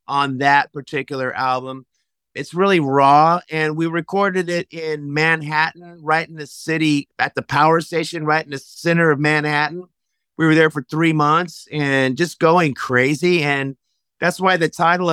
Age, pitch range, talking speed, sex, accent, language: 30-49, 145-165 Hz, 165 wpm, male, American, English